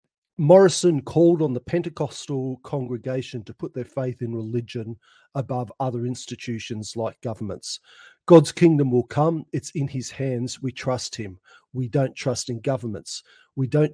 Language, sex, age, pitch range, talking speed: English, male, 50-69, 120-140 Hz, 150 wpm